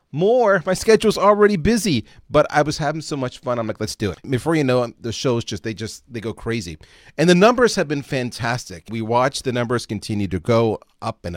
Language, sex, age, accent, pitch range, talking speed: English, male, 30-49, American, 105-140 Hz, 230 wpm